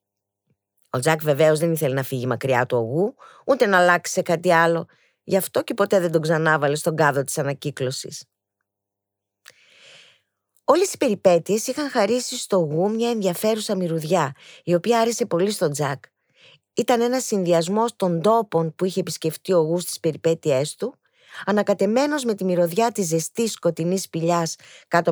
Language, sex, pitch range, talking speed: Greek, female, 155-215 Hz, 160 wpm